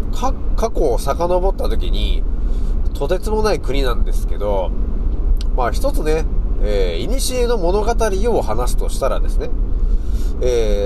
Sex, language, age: male, Japanese, 30-49